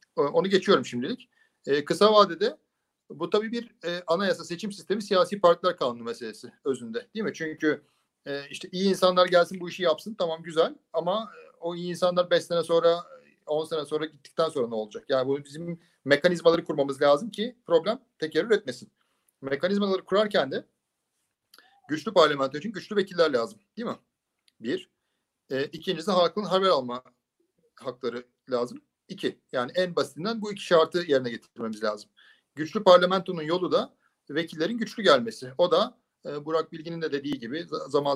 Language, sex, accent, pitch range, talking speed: Turkish, male, native, 140-190 Hz, 155 wpm